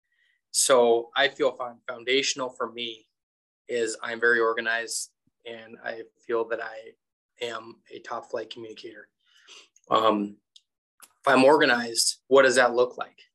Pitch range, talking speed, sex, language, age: 120-140 Hz, 130 wpm, male, English, 20-39